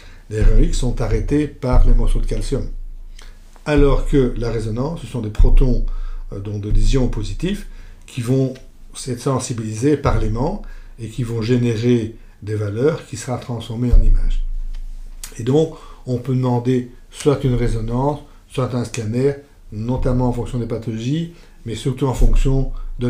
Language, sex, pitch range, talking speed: French, male, 110-140 Hz, 155 wpm